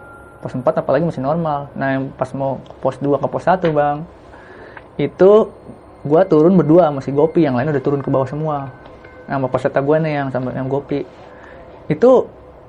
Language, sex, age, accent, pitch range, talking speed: Indonesian, male, 20-39, native, 140-180 Hz, 175 wpm